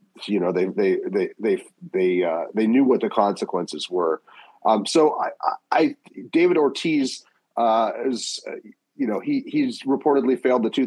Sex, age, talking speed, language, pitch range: male, 30-49, 170 wpm, English, 105-150 Hz